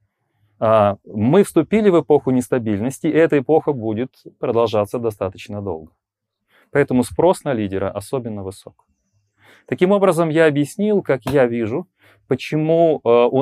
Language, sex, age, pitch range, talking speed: Ukrainian, male, 30-49, 110-160 Hz, 120 wpm